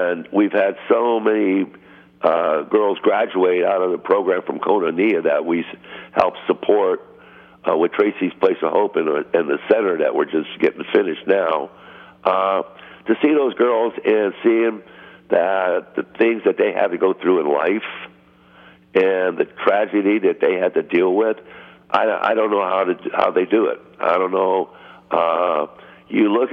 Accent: American